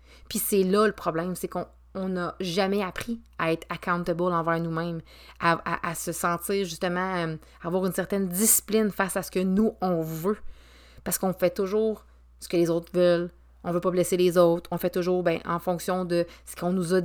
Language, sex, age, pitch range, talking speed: French, female, 30-49, 170-200 Hz, 220 wpm